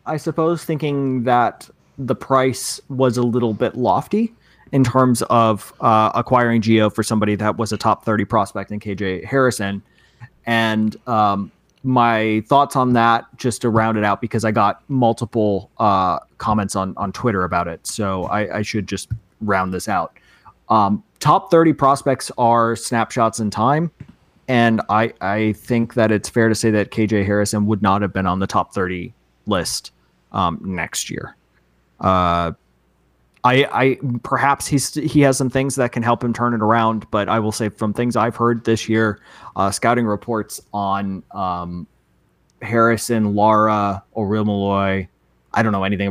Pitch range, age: 95-120 Hz, 20-39